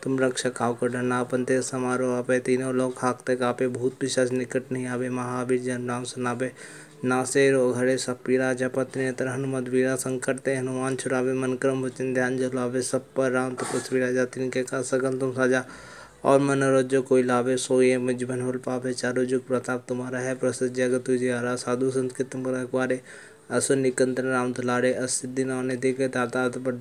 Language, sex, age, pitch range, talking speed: Hindi, male, 20-39, 125-130 Hz, 135 wpm